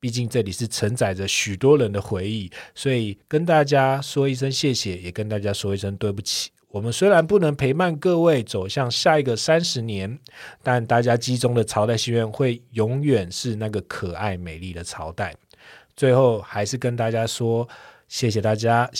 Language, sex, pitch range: Chinese, male, 105-140 Hz